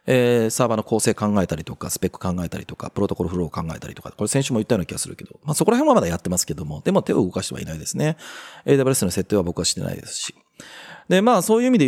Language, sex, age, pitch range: Japanese, male, 30-49, 100-170 Hz